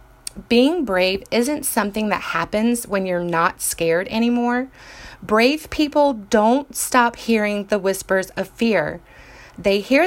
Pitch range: 185-240 Hz